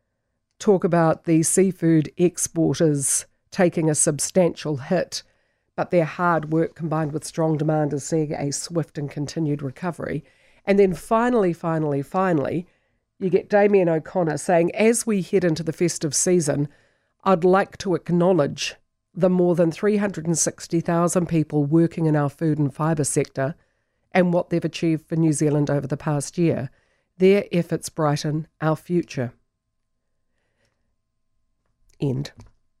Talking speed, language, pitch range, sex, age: 135 wpm, English, 150-205 Hz, female, 50-69